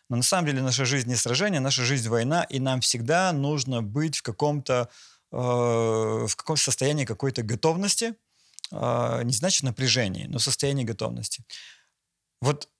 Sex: male